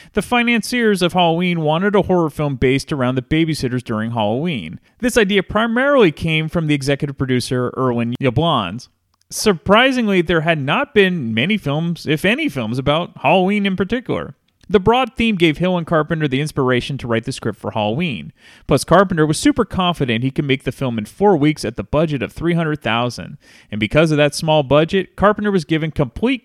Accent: American